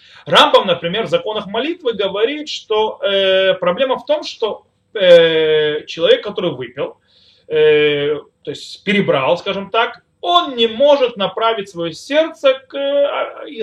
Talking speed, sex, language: 130 wpm, male, Russian